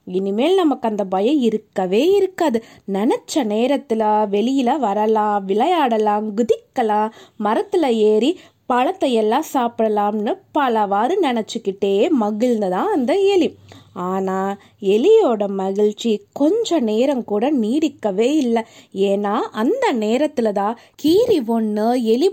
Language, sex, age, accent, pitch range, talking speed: Tamil, female, 20-39, native, 215-330 Hz, 95 wpm